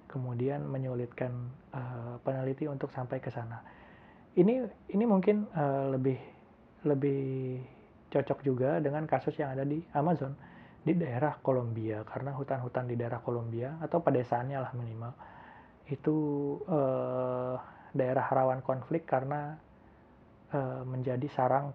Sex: male